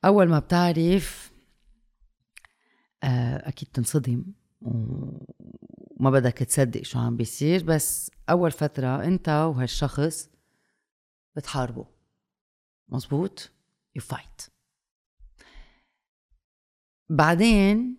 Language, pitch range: Arabic, 120-160 Hz